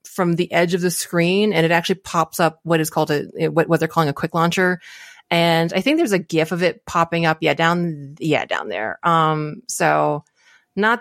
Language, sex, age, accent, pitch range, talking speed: English, female, 30-49, American, 155-185 Hz, 220 wpm